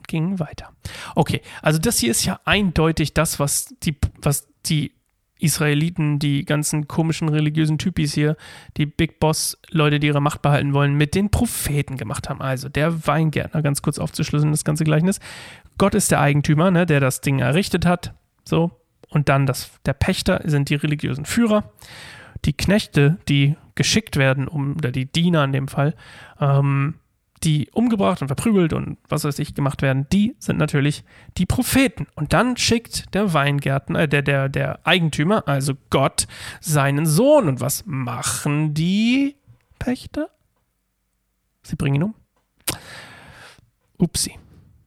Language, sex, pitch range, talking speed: German, male, 135-165 Hz, 155 wpm